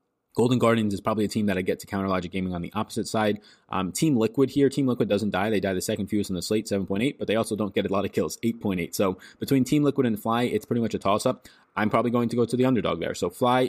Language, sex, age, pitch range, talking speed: English, male, 20-39, 95-120 Hz, 295 wpm